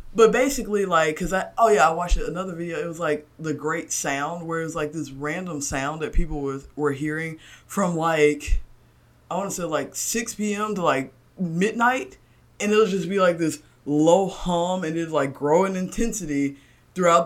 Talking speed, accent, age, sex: 195 wpm, American, 20-39, female